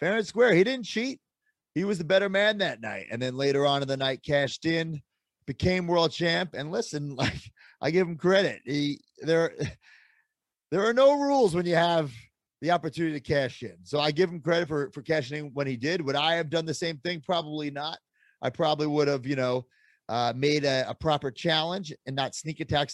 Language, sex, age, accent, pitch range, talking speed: Hebrew, male, 30-49, American, 135-170 Hz, 210 wpm